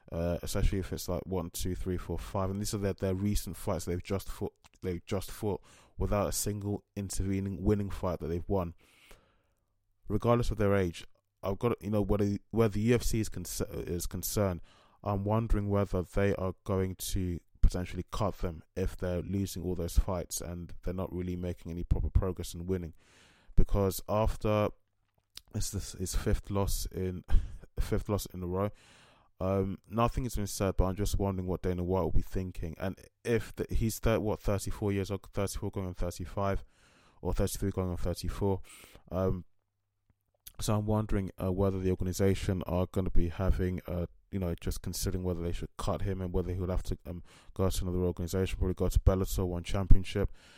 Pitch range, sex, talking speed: 90-100 Hz, male, 190 wpm